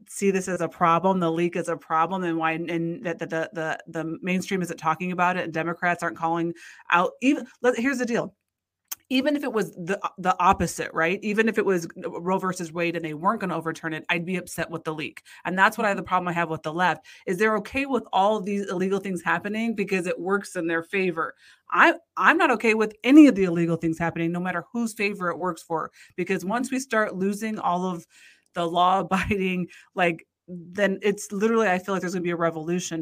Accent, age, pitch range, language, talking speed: American, 30-49, 170-220 Hz, English, 230 wpm